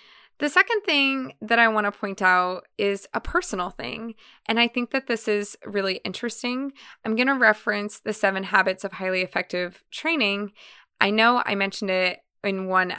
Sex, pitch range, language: female, 185-225 Hz, English